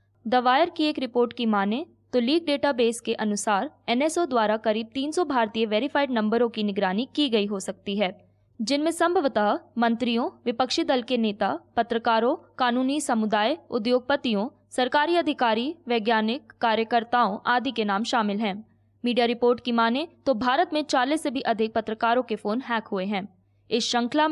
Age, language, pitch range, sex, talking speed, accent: 20-39, Hindi, 215-270 Hz, female, 160 wpm, native